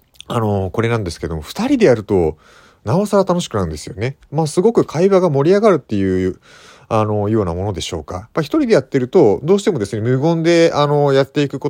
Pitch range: 100-155 Hz